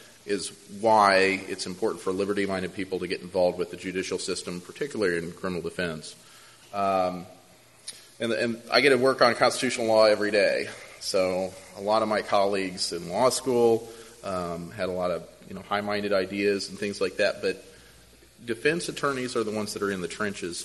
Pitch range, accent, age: 95-115 Hz, American, 30-49